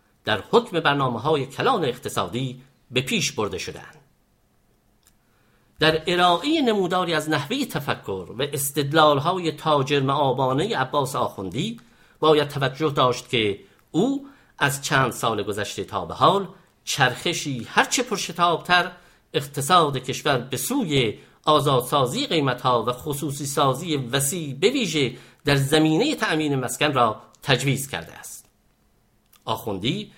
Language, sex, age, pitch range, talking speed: English, male, 50-69, 130-160 Hz, 120 wpm